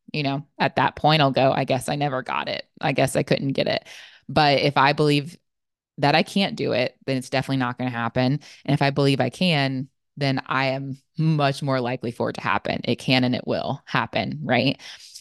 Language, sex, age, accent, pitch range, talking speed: English, female, 20-39, American, 130-155 Hz, 230 wpm